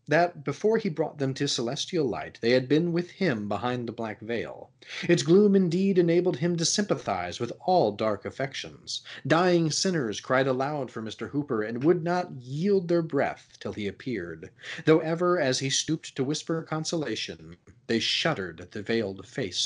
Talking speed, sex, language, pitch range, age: 175 wpm, male, English, 115-165 Hz, 30-49